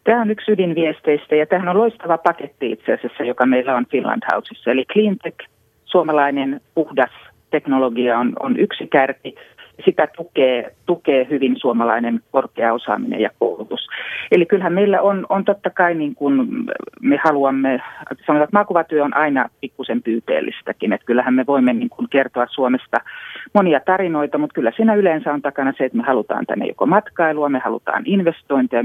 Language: Finnish